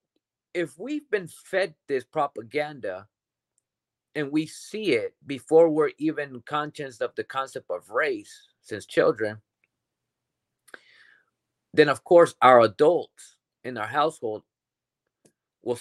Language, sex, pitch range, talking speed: English, male, 125-195 Hz, 115 wpm